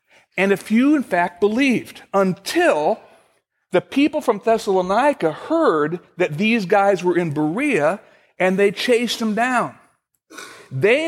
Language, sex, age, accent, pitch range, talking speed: English, male, 60-79, American, 160-225 Hz, 130 wpm